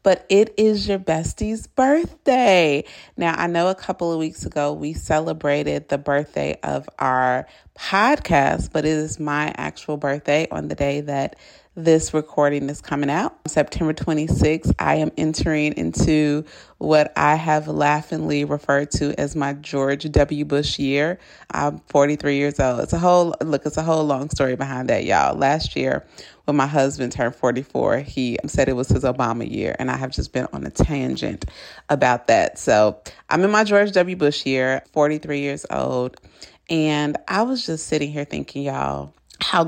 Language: English